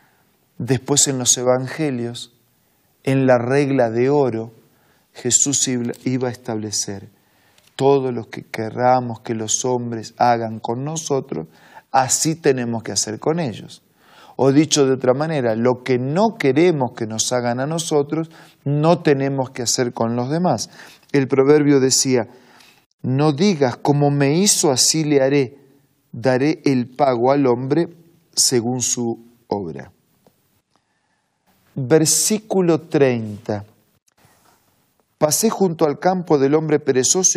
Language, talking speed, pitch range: Spanish, 125 wpm, 120-150 Hz